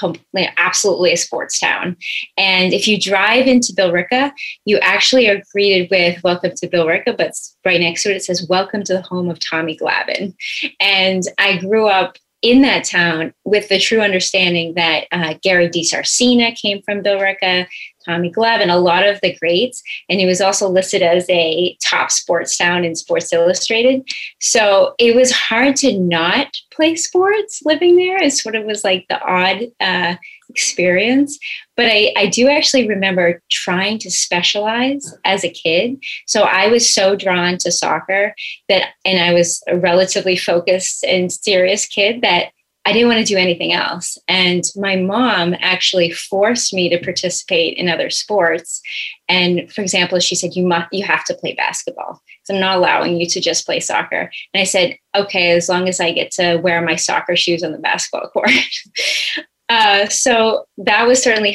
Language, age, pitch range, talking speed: English, 30-49, 175-225 Hz, 175 wpm